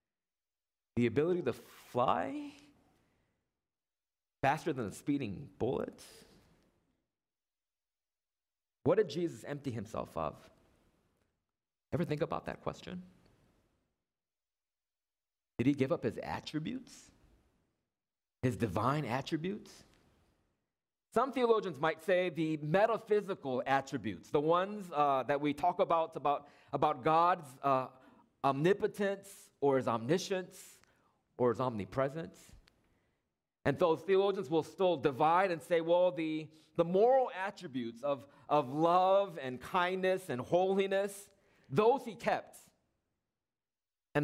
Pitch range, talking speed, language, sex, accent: 130-190 Hz, 105 wpm, English, male, American